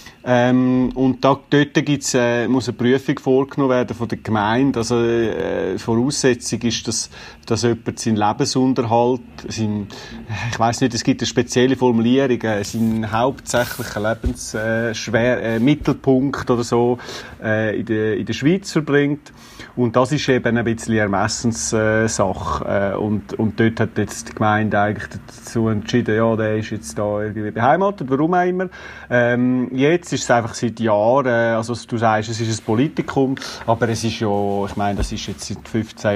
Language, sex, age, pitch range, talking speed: German, male, 30-49, 110-125 Hz, 170 wpm